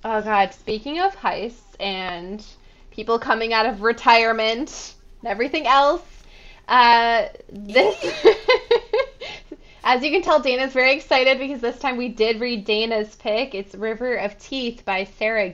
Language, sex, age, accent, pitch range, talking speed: English, female, 20-39, American, 205-255 Hz, 145 wpm